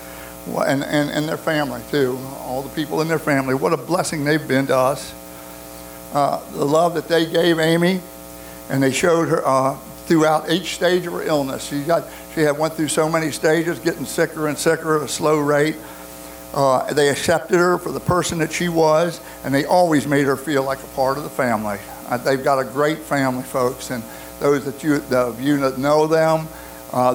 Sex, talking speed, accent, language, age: male, 205 wpm, American, English, 60-79